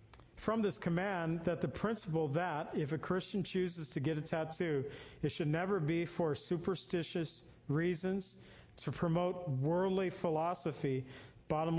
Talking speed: 135 wpm